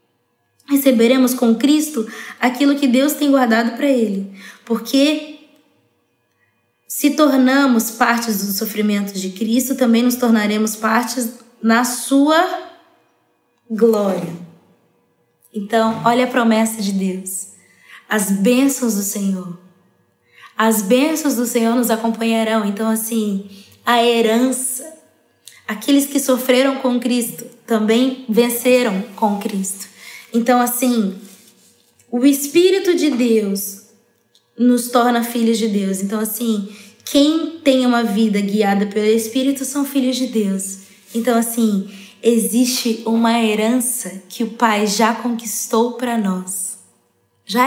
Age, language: 20-39, Portuguese